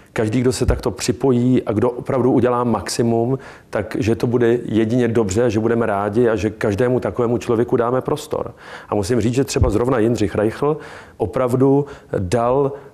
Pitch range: 105-125 Hz